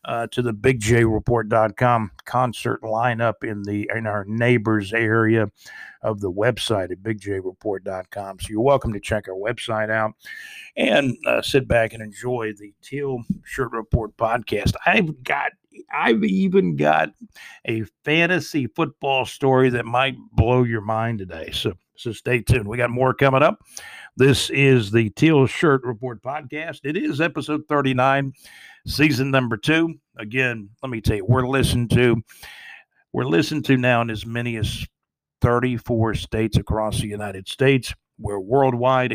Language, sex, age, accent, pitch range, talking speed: English, male, 60-79, American, 110-135 Hz, 150 wpm